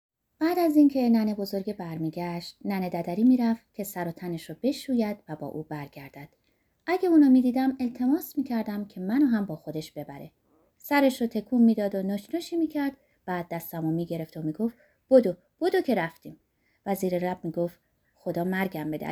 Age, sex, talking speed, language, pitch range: 30-49, female, 180 wpm, Persian, 170-275 Hz